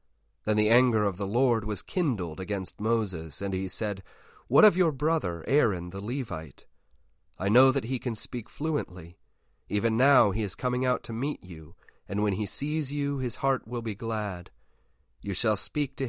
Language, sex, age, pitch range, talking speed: English, male, 40-59, 95-125 Hz, 185 wpm